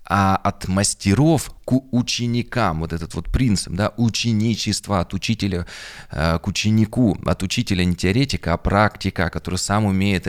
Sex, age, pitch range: male, 20-39, 90-115 Hz